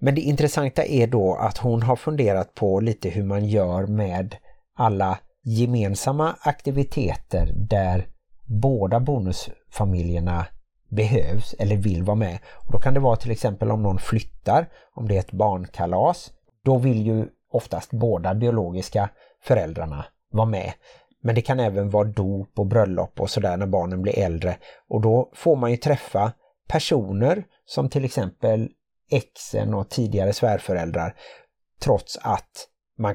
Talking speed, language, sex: 145 wpm, Swedish, male